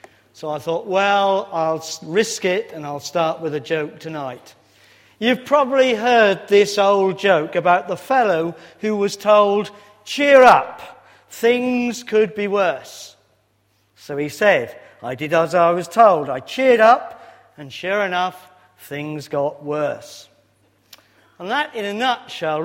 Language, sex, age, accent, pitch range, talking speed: English, male, 50-69, British, 175-225 Hz, 145 wpm